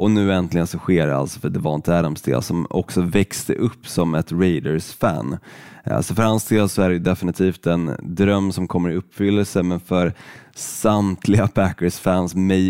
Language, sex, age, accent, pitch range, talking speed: Swedish, male, 20-39, native, 85-100 Hz, 185 wpm